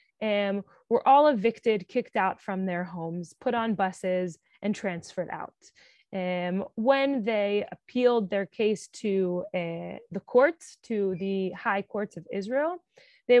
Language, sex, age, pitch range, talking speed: English, female, 20-39, 190-255 Hz, 145 wpm